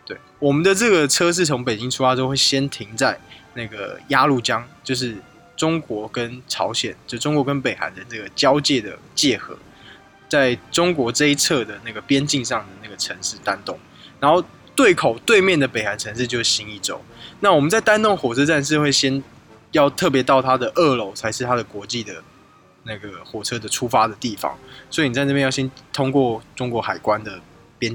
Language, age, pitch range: Chinese, 20-39, 110-140 Hz